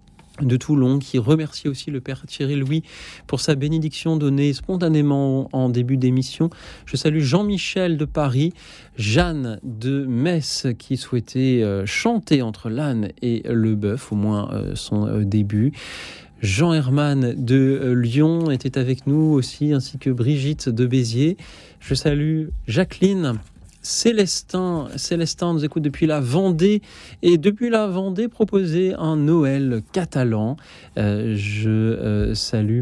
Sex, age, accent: male, 40-59, French